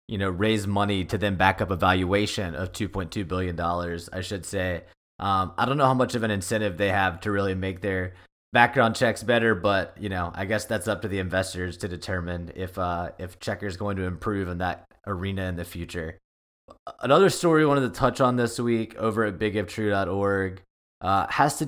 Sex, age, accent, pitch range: male, 20-39, American, 95-110 Hz